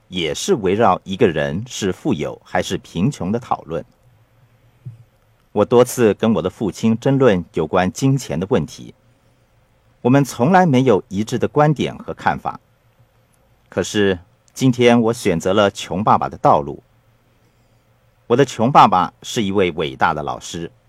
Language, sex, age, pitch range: Chinese, male, 50-69, 105-130 Hz